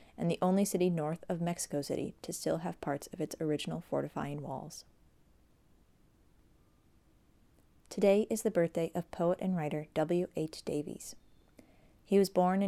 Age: 30-49